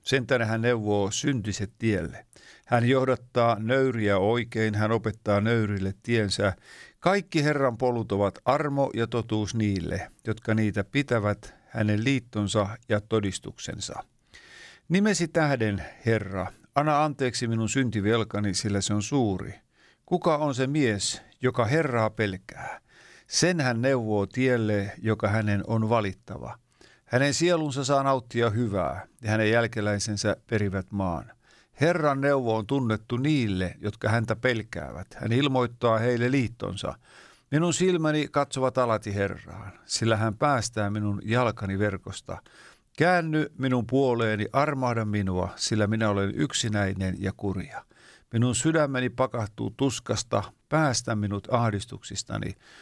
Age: 50-69